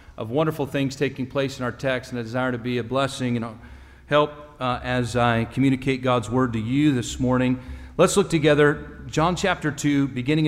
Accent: American